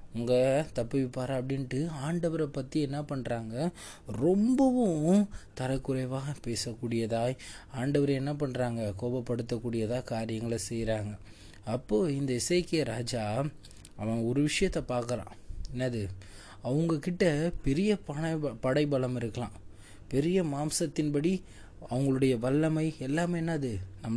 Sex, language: male, Tamil